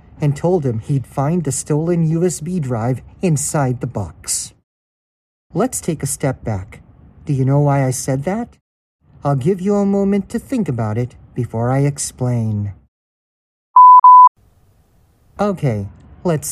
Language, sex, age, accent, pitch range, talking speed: English, male, 50-69, American, 120-175 Hz, 140 wpm